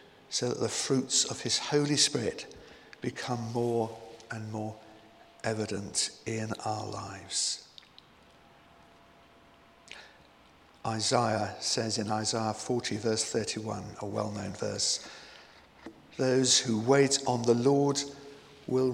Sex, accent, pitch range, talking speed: male, British, 105-130 Hz, 105 wpm